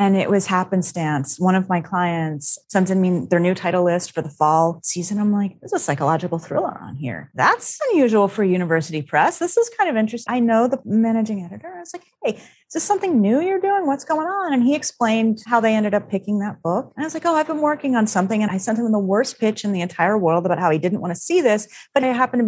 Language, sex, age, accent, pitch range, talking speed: English, female, 30-49, American, 180-255 Hz, 260 wpm